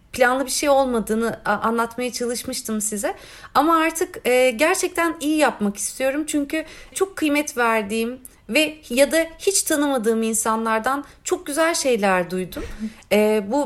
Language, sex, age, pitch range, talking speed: Turkish, female, 40-59, 205-300 Hz, 125 wpm